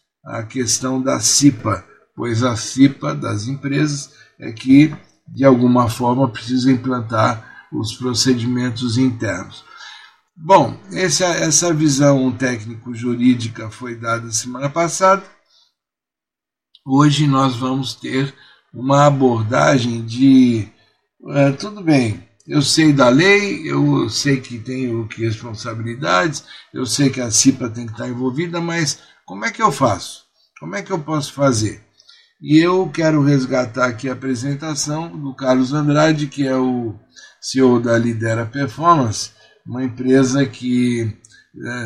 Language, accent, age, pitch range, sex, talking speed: Portuguese, Brazilian, 60-79, 120-150 Hz, male, 130 wpm